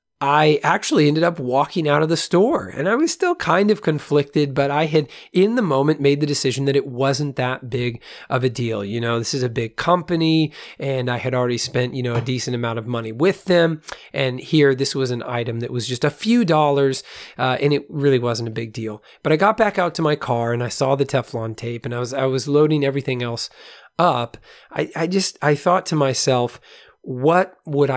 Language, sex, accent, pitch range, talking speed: English, male, American, 125-155 Hz, 225 wpm